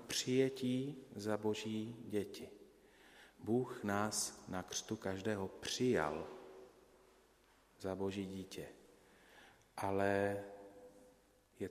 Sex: male